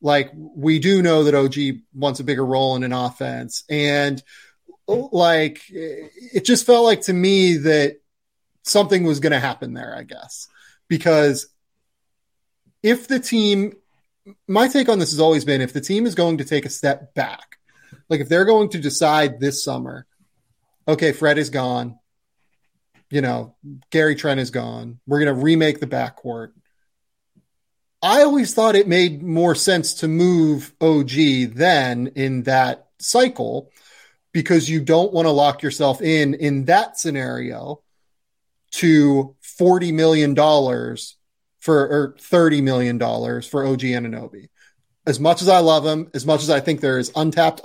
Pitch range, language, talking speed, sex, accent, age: 135-170 Hz, English, 155 wpm, male, American, 30-49